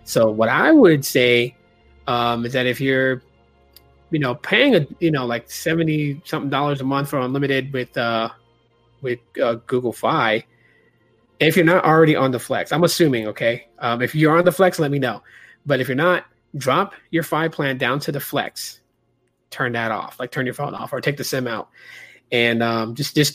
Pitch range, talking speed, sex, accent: 120-160 Hz, 200 wpm, male, American